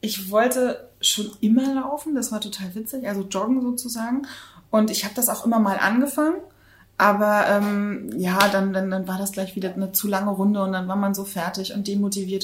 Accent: German